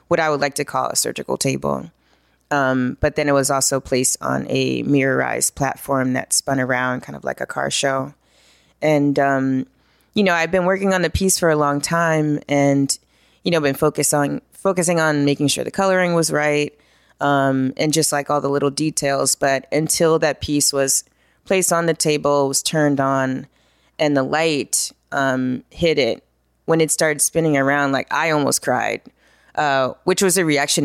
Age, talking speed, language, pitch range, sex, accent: 20-39, 190 wpm, English, 130-155 Hz, female, American